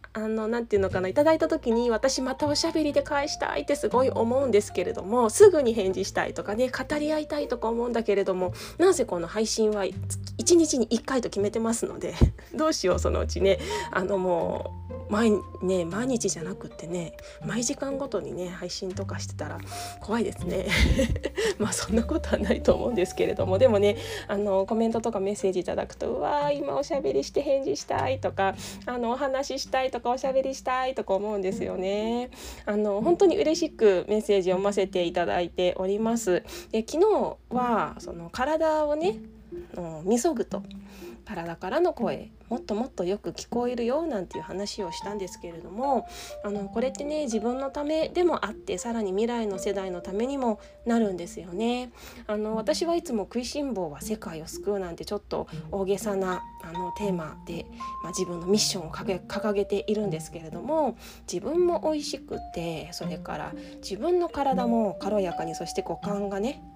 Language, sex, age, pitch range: Japanese, female, 20-39, 190-265 Hz